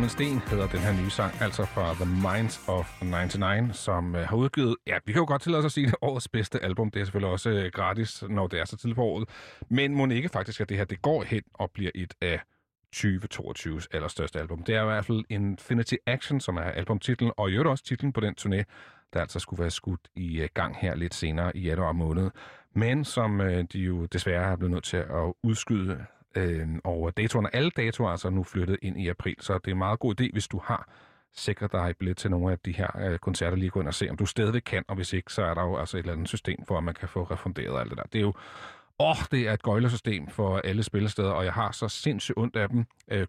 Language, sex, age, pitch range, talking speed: Danish, male, 40-59, 90-115 Hz, 250 wpm